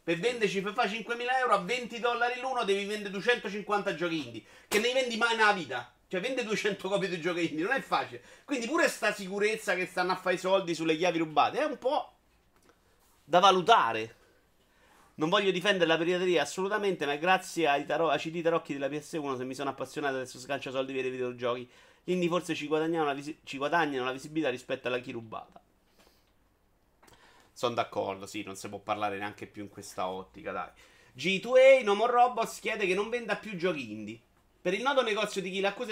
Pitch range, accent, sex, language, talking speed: 140-205 Hz, native, male, Italian, 190 wpm